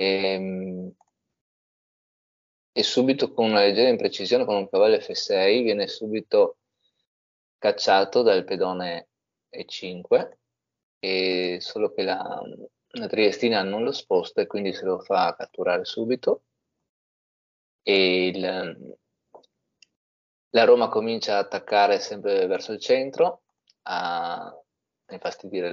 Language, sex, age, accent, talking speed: Italian, male, 20-39, native, 105 wpm